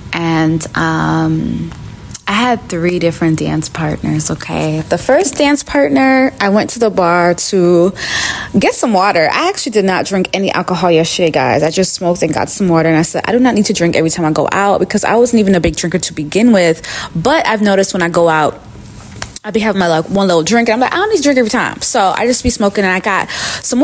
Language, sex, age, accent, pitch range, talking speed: English, female, 20-39, American, 170-235 Hz, 240 wpm